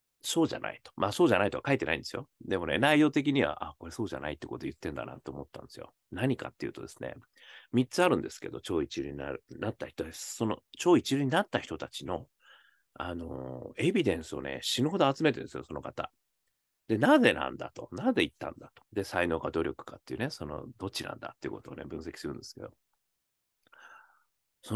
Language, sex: Japanese, male